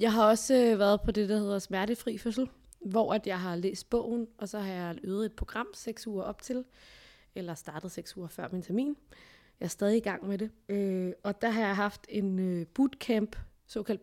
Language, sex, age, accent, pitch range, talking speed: Danish, female, 20-39, native, 190-225 Hz, 210 wpm